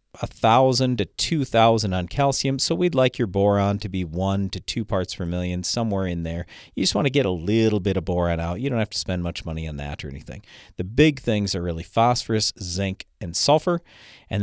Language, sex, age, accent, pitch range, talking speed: English, male, 40-59, American, 95-130 Hz, 230 wpm